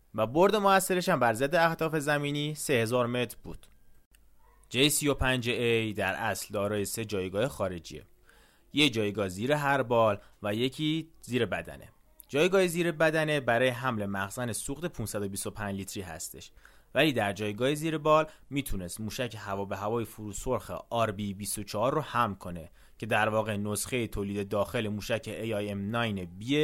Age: 30-49